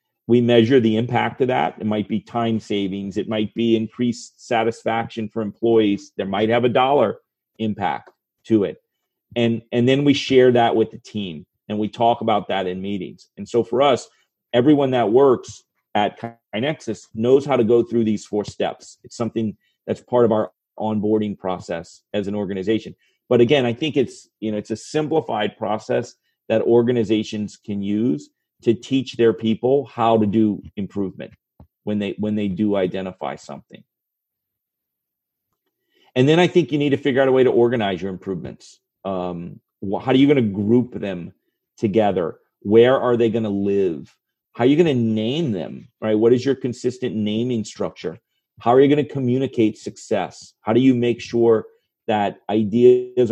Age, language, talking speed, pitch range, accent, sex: 40-59, English, 180 wpm, 105-125 Hz, American, male